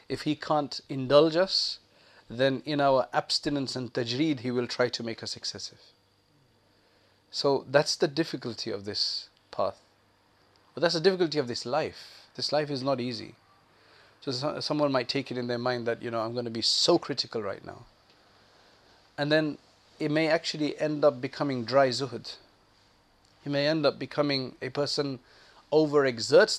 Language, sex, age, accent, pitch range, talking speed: English, male, 30-49, South African, 120-150 Hz, 165 wpm